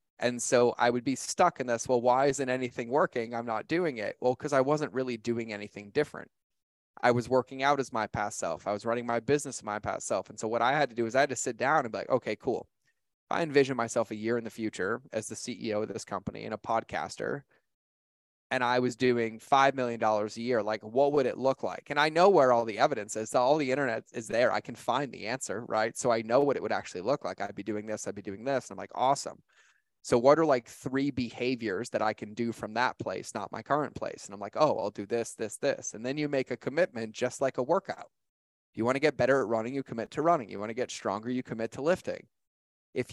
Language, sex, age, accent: English, male, 20-39, American